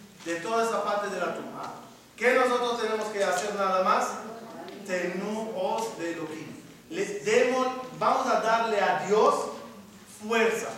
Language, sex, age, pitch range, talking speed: Spanish, male, 40-59, 175-225 Hz, 135 wpm